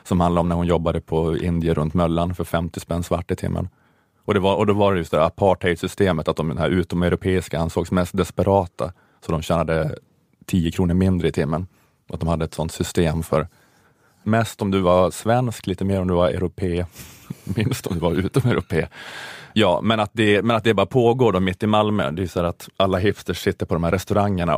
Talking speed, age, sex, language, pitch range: 225 wpm, 30-49, male, Swedish, 90-120 Hz